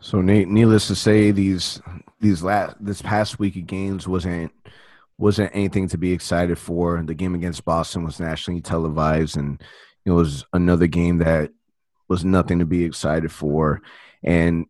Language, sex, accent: English, male, American